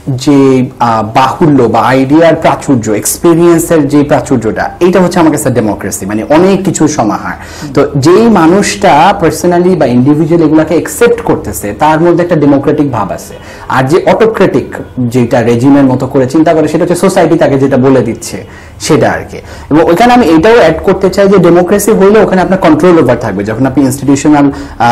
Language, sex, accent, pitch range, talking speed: Bengali, male, native, 125-175 Hz, 155 wpm